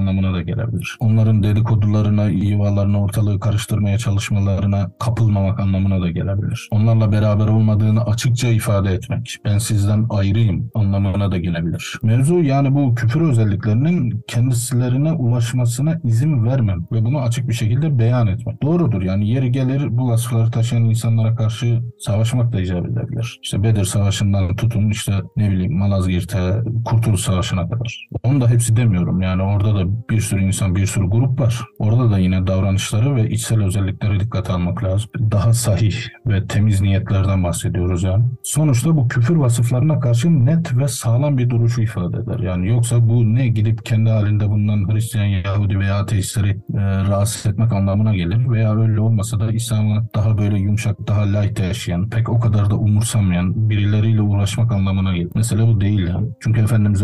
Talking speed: 160 wpm